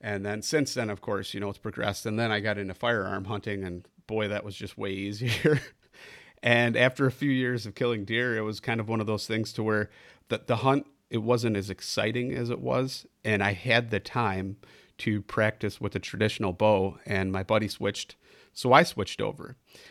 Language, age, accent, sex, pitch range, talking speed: English, 40-59, American, male, 105-125 Hz, 215 wpm